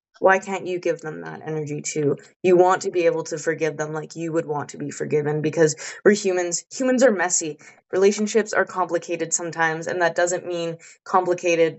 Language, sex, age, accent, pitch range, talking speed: English, female, 20-39, American, 155-180 Hz, 195 wpm